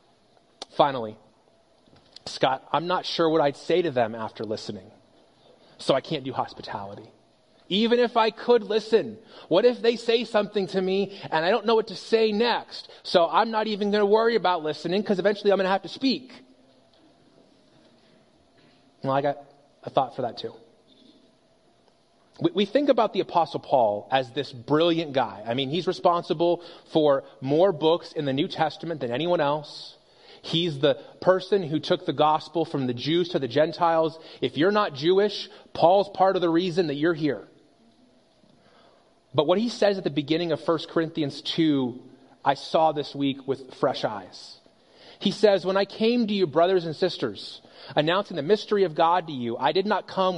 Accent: American